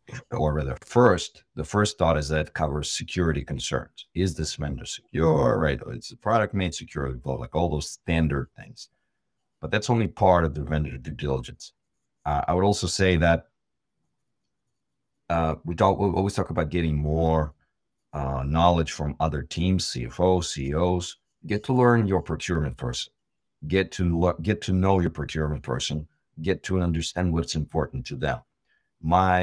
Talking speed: 165 wpm